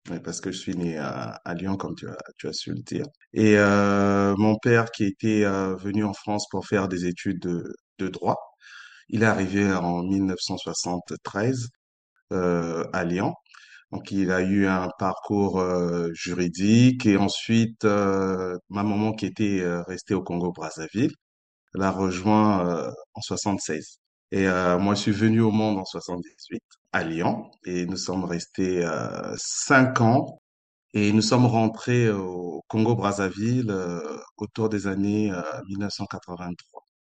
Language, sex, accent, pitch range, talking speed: French, male, French, 90-105 Hz, 155 wpm